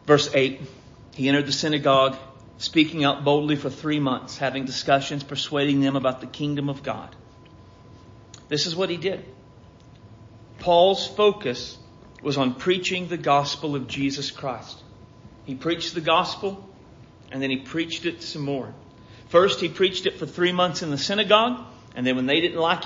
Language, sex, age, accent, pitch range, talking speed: English, male, 40-59, American, 125-165 Hz, 165 wpm